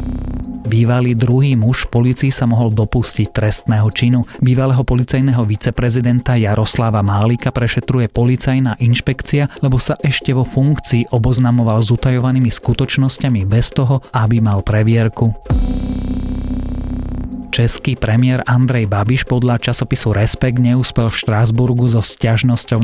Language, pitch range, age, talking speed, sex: Slovak, 110-125 Hz, 30-49, 115 wpm, male